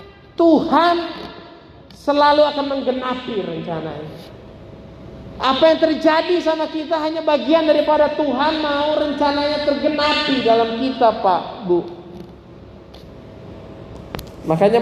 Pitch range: 155-215 Hz